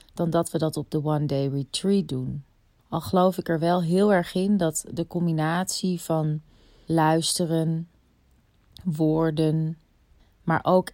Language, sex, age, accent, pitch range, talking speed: Dutch, female, 30-49, Dutch, 150-180 Hz, 145 wpm